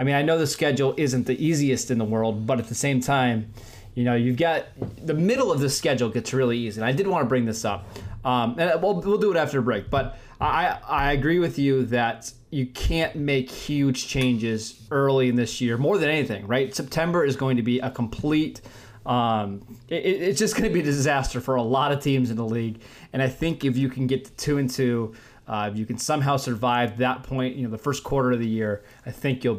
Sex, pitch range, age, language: male, 120-150 Hz, 20-39, English